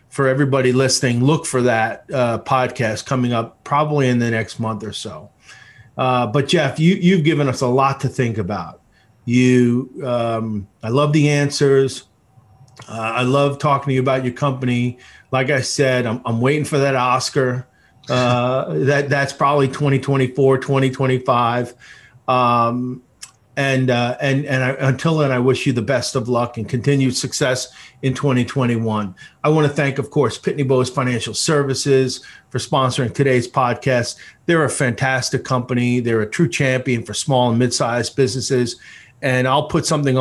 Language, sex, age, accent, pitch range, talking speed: English, male, 40-59, American, 120-140 Hz, 165 wpm